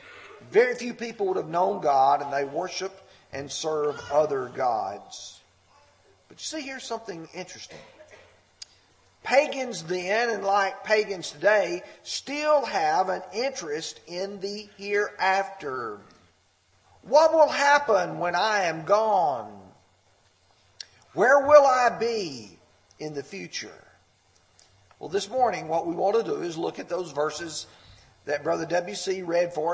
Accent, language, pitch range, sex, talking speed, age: American, English, 150-235 Hz, male, 130 wpm, 50-69